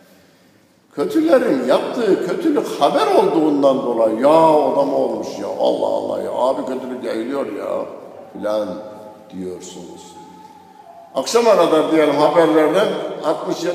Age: 60-79